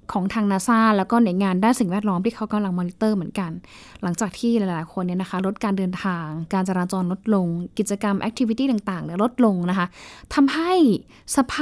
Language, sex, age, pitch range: Thai, female, 10-29, 190-230 Hz